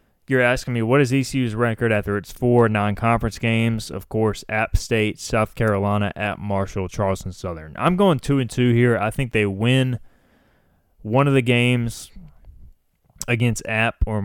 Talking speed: 165 wpm